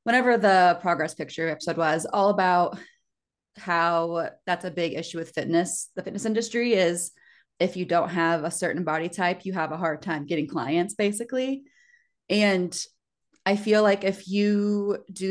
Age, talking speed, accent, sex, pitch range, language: 20-39, 165 wpm, American, female, 165-205 Hz, English